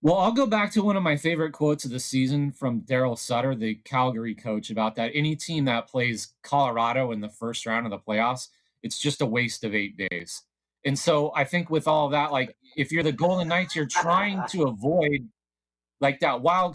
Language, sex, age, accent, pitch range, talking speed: English, male, 30-49, American, 115-150 Hz, 220 wpm